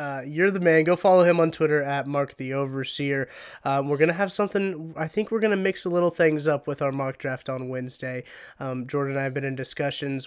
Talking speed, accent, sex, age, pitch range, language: 240 wpm, American, male, 20-39, 135-165 Hz, English